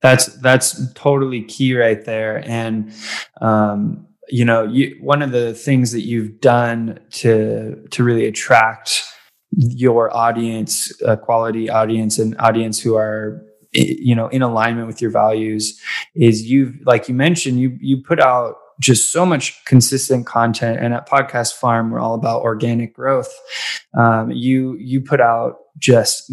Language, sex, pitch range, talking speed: English, male, 115-130 Hz, 155 wpm